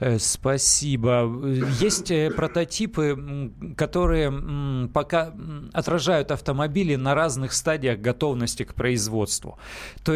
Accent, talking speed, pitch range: native, 85 wpm, 125-160 Hz